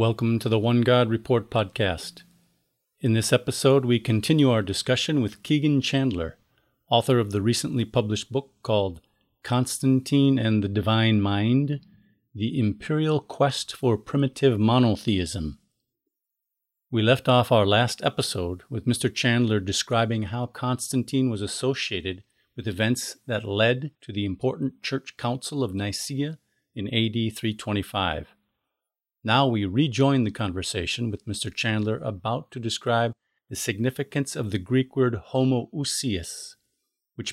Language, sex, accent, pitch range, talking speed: English, male, American, 105-130 Hz, 130 wpm